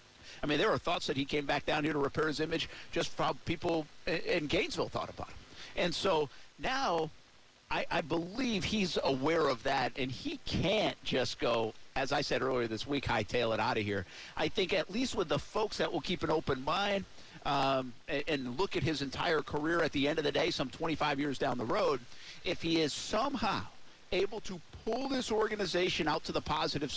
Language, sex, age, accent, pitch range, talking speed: English, male, 50-69, American, 130-180 Hz, 210 wpm